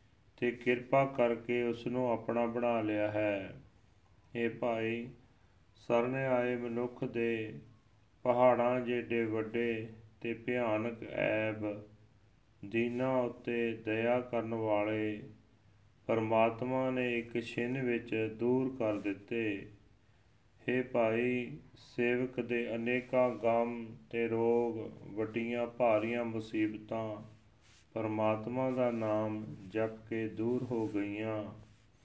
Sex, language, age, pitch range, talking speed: male, Punjabi, 40-59, 110-120 Hz, 100 wpm